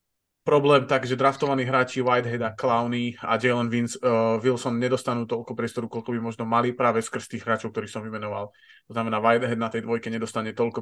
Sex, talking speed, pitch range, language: male, 195 wpm, 115-130 Hz, Slovak